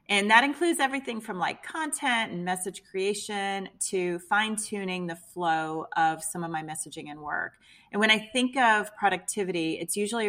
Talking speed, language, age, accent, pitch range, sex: 170 wpm, English, 30-49, American, 170-210 Hz, female